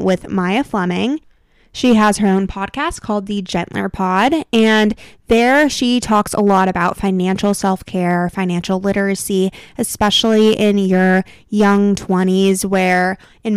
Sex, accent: female, American